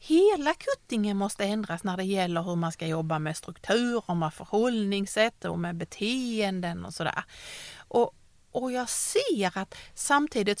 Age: 40-59